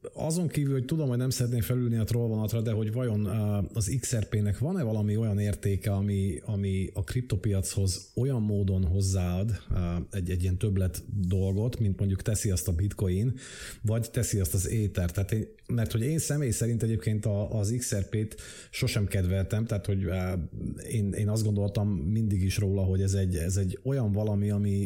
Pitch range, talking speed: 100-115 Hz, 160 wpm